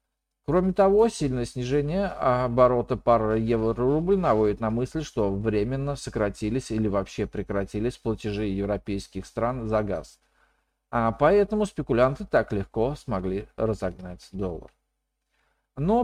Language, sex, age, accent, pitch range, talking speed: Russian, male, 40-59, native, 100-145 Hz, 110 wpm